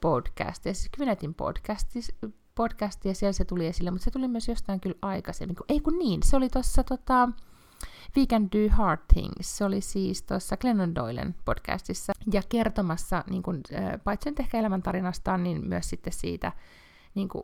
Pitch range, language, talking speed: 135-200 Hz, Finnish, 160 wpm